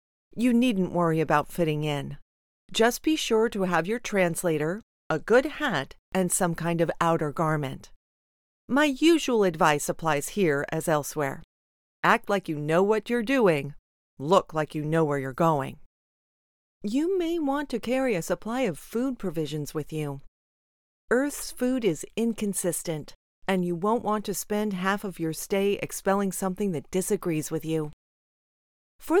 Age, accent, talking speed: 40-59, American, 155 wpm